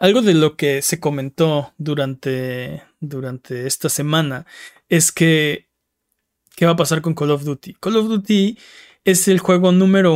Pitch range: 150-175 Hz